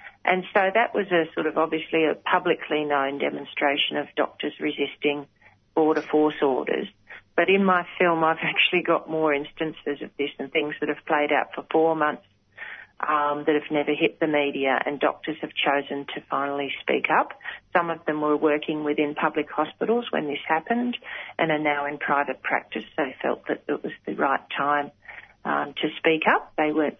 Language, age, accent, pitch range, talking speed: English, 40-59, Australian, 150-170 Hz, 185 wpm